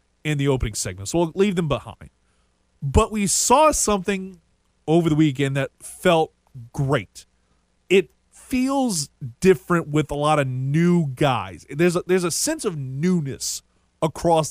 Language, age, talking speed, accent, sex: English, 30-49, 145 wpm, American, male